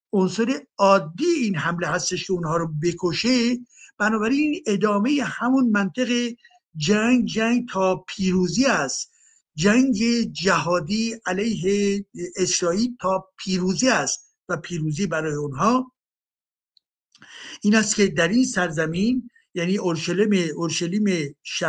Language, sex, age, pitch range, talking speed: Persian, male, 60-79, 155-220 Hz, 100 wpm